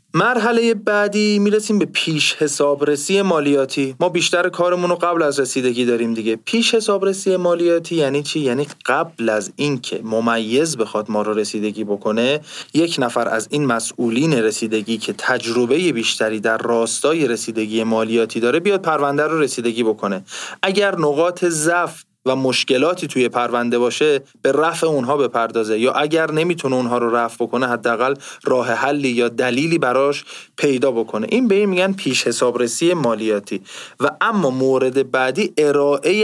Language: Persian